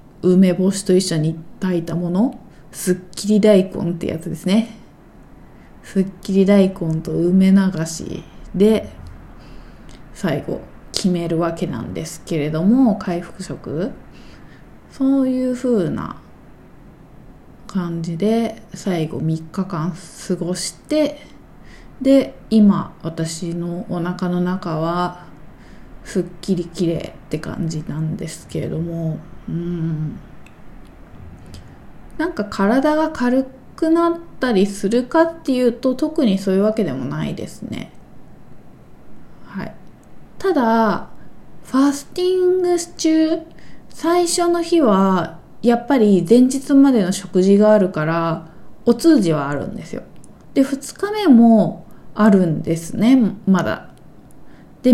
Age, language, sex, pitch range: 20-39, Japanese, female, 175-255 Hz